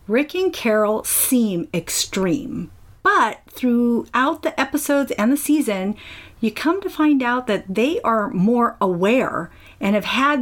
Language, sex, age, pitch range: English, female, 40-59, 195-265 Hz